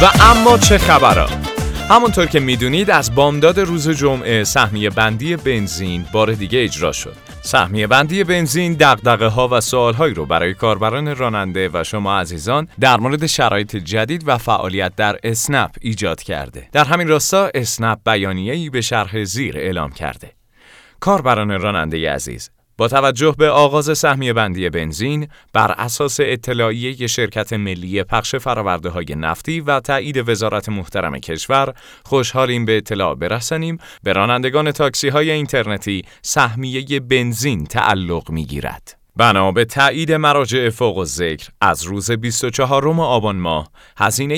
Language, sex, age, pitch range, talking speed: Persian, male, 30-49, 100-135 Hz, 140 wpm